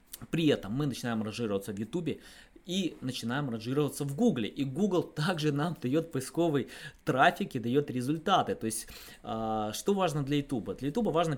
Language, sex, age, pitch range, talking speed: Russian, male, 20-39, 120-155 Hz, 165 wpm